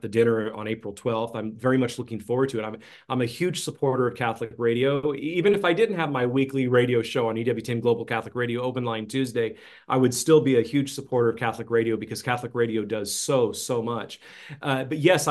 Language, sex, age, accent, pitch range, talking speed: English, male, 40-59, American, 120-145 Hz, 225 wpm